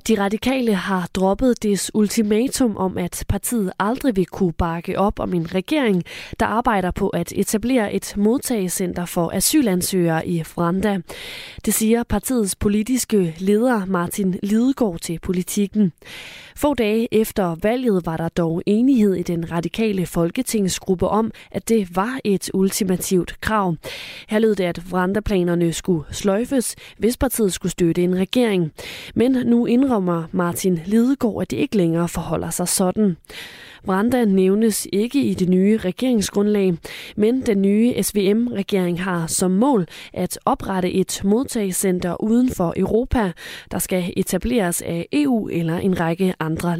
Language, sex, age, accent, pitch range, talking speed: Danish, female, 20-39, native, 180-220 Hz, 140 wpm